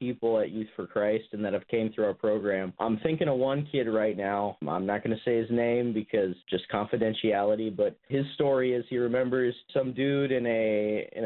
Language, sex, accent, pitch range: English, male, American, 105-125 Hz